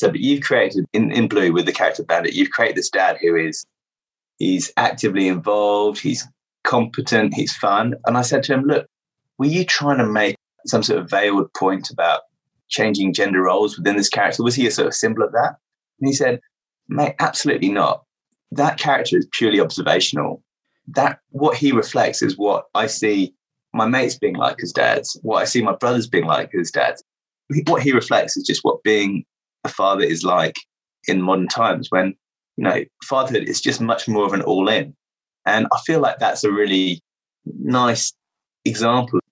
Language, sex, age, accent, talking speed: English, male, 20-39, British, 190 wpm